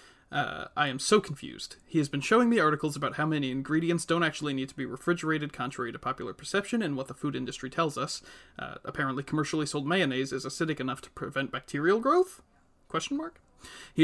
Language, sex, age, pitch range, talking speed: English, male, 30-49, 140-170 Hz, 200 wpm